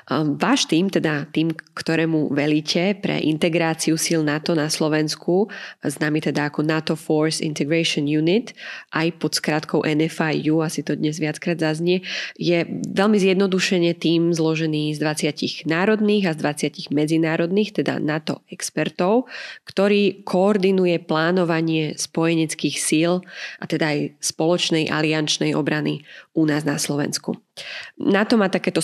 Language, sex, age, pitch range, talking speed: Slovak, female, 20-39, 155-190 Hz, 125 wpm